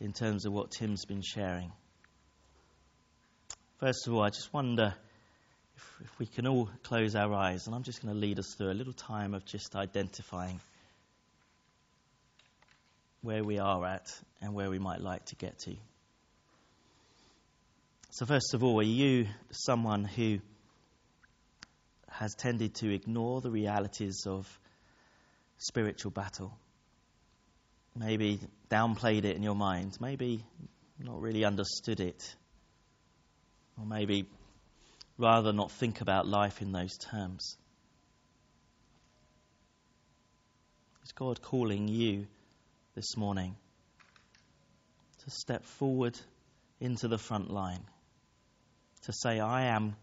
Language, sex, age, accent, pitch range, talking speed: English, male, 30-49, British, 95-115 Hz, 120 wpm